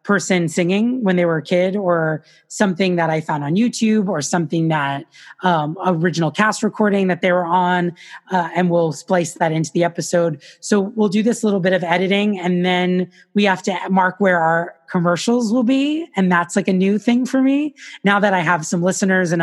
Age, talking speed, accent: 20-39, 205 wpm, American